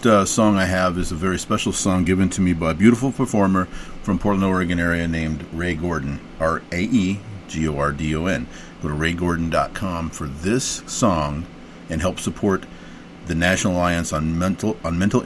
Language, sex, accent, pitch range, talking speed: English, male, American, 85-105 Hz, 155 wpm